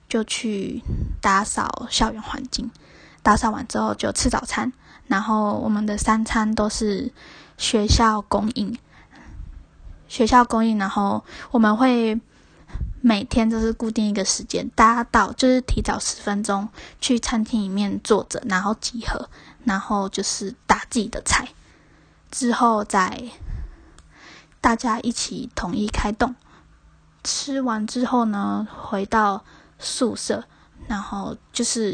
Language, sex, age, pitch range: English, female, 10-29, 210-240 Hz